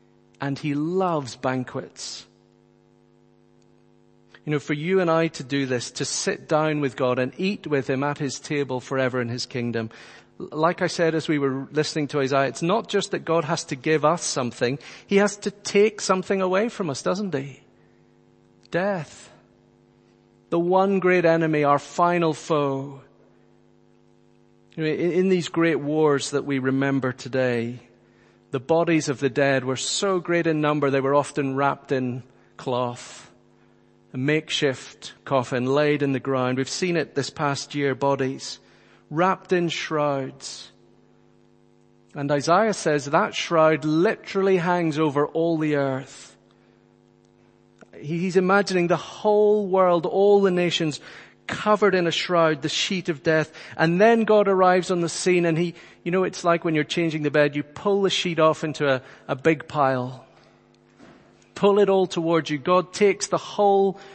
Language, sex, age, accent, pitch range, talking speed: English, male, 40-59, British, 125-175 Hz, 160 wpm